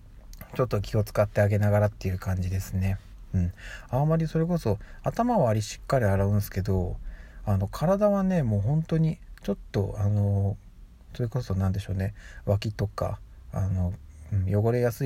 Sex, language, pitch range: male, Japanese, 95-130 Hz